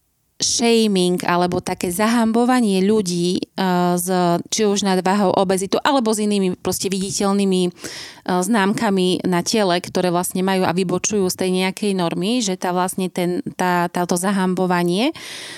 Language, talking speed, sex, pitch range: Slovak, 130 wpm, female, 175-210 Hz